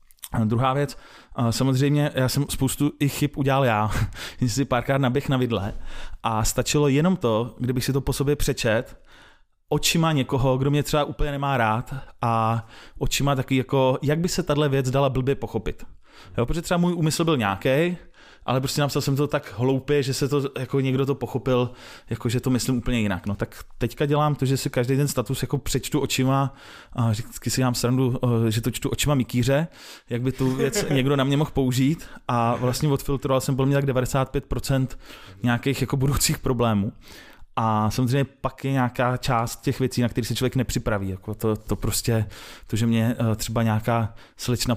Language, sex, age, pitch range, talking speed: Czech, male, 20-39, 115-140 Hz, 190 wpm